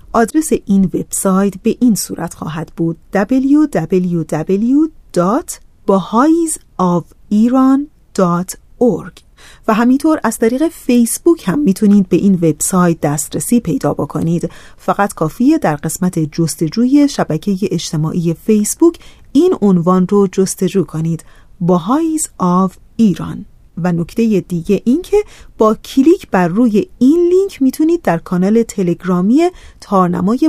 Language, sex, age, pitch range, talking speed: Persian, female, 30-49, 175-245 Hz, 105 wpm